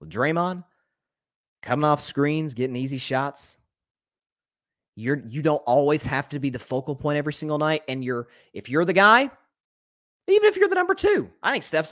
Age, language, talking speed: 30-49, English, 175 wpm